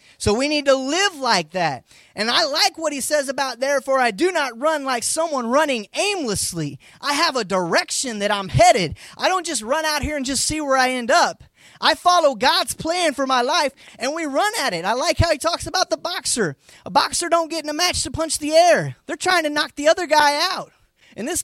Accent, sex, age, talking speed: American, male, 20-39, 235 wpm